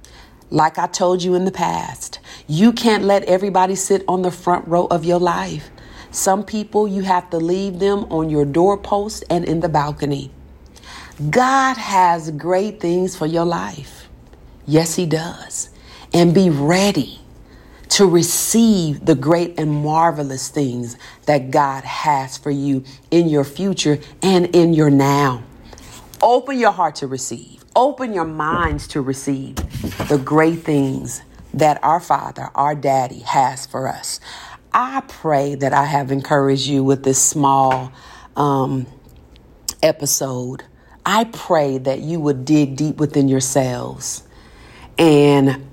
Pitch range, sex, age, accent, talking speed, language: 135-175 Hz, female, 40-59, American, 140 wpm, English